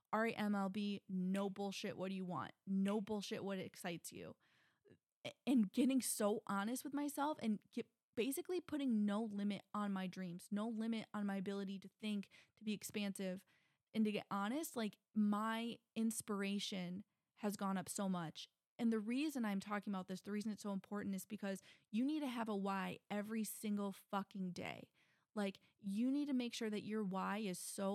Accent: American